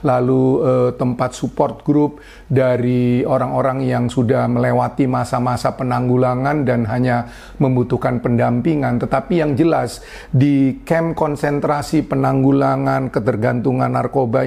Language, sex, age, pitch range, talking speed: Indonesian, male, 40-59, 120-140 Hz, 105 wpm